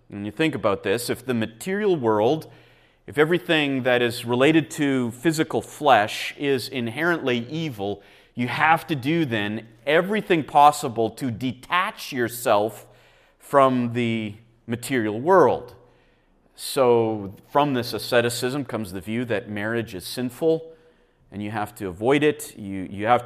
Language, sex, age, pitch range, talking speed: English, male, 30-49, 115-155 Hz, 140 wpm